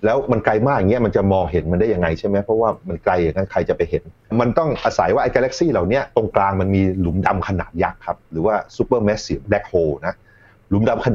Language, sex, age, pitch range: Thai, male, 30-49, 90-110 Hz